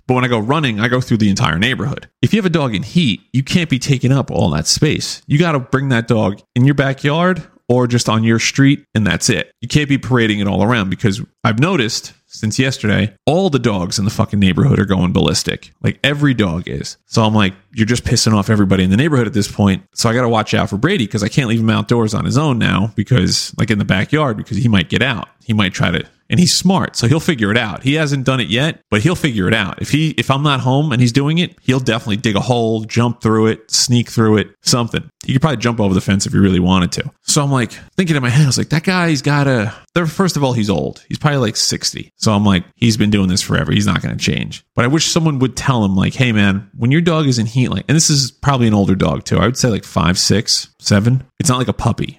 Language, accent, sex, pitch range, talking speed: English, American, male, 105-140 Hz, 275 wpm